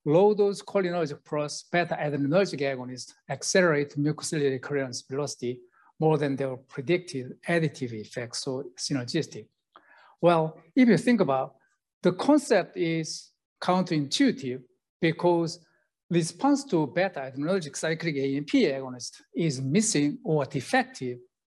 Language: English